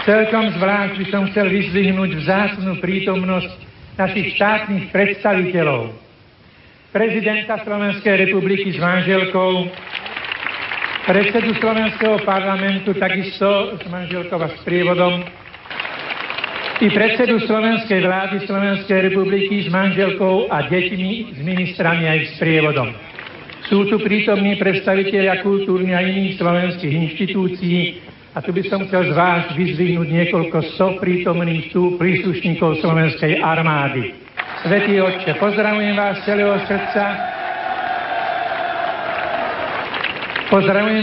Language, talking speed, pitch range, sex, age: Slovak, 105 wpm, 175-205 Hz, male, 60-79